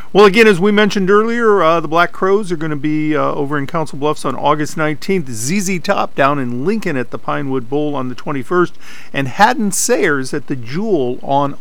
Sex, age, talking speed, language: male, 50-69, 205 wpm, English